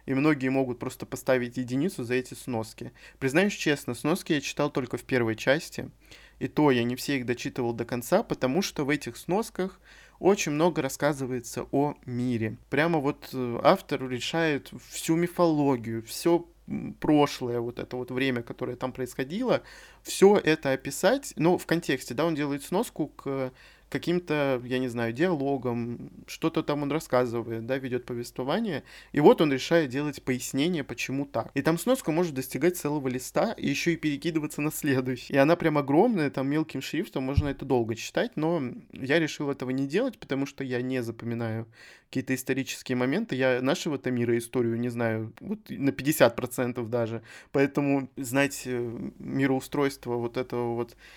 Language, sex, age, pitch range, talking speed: Russian, male, 20-39, 125-155 Hz, 160 wpm